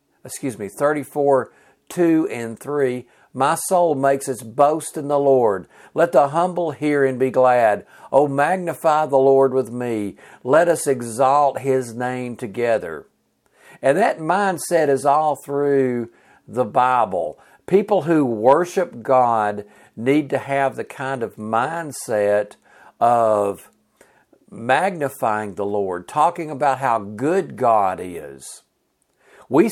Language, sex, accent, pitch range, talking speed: English, male, American, 115-150 Hz, 125 wpm